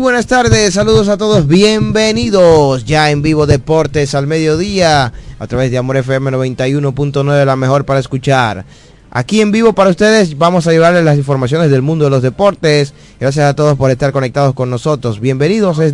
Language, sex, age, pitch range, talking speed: Spanish, male, 20-39, 125-160 Hz, 175 wpm